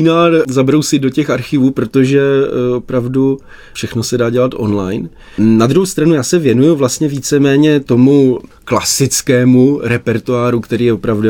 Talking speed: 140 wpm